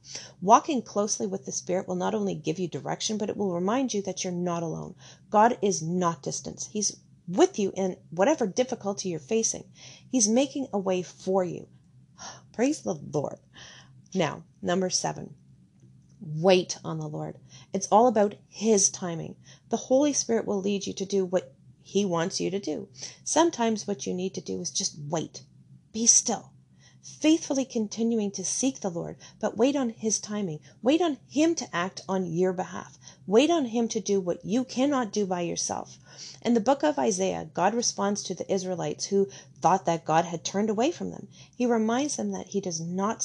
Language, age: English, 40-59